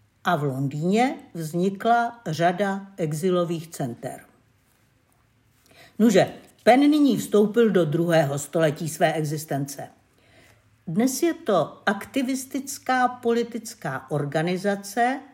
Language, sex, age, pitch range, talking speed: Czech, female, 50-69, 155-230 Hz, 85 wpm